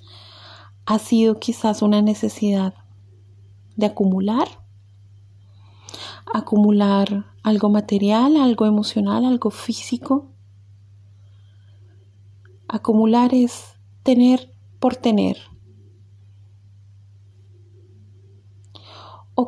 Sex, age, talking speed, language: female, 30-49, 60 wpm, Spanish